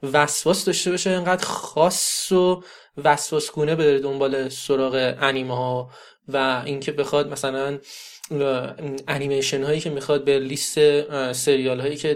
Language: Persian